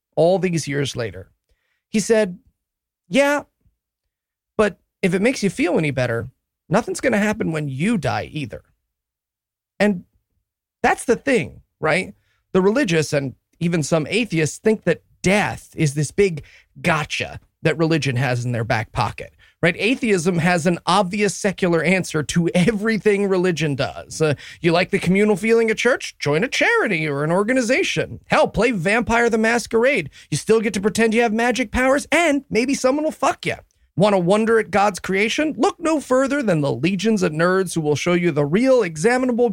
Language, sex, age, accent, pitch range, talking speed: English, male, 30-49, American, 155-230 Hz, 175 wpm